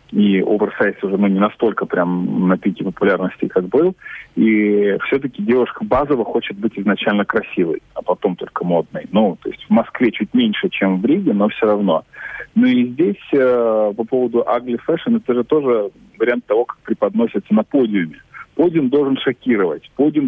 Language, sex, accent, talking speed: Russian, male, native, 170 wpm